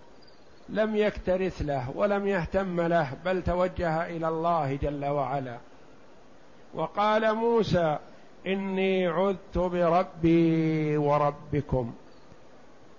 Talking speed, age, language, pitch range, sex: 85 wpm, 50-69, Arabic, 155-195 Hz, male